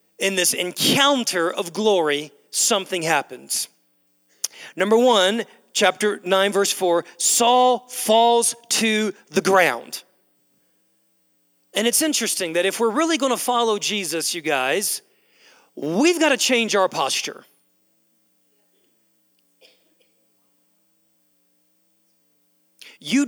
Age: 40-59